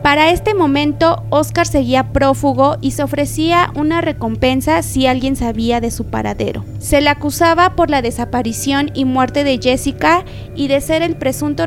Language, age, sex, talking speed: Spanish, 20-39, female, 165 wpm